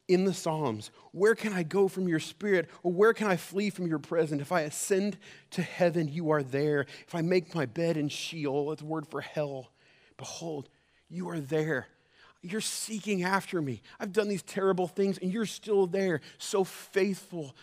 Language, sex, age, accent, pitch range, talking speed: English, male, 30-49, American, 130-175 Hz, 195 wpm